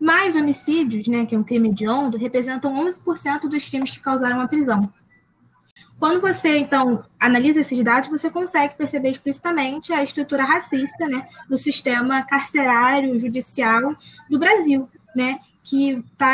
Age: 20-39